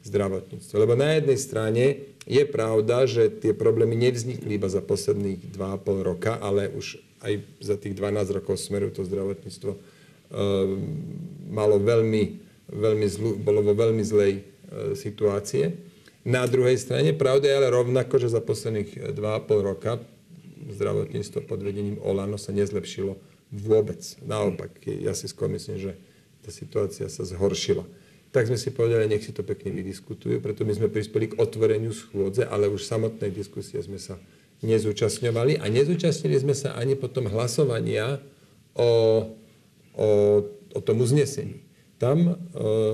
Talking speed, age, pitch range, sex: 145 wpm, 40-59, 100-135 Hz, male